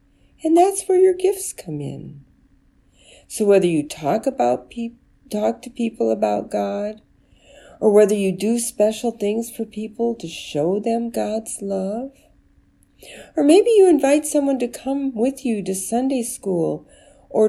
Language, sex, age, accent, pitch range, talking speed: English, female, 50-69, American, 160-245 Hz, 150 wpm